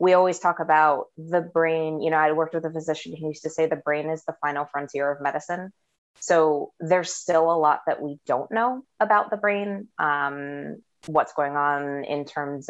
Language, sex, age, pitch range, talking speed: English, female, 20-39, 145-165 Hz, 205 wpm